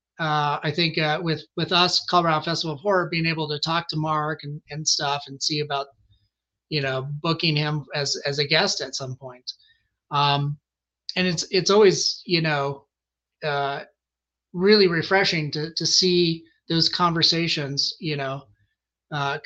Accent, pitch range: American, 145-185 Hz